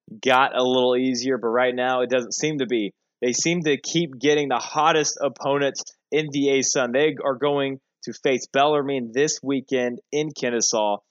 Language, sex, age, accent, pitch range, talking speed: English, male, 20-39, American, 120-145 Hz, 185 wpm